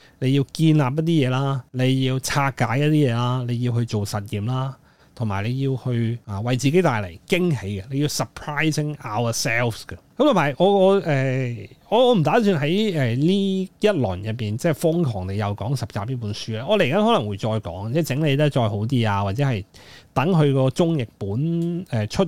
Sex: male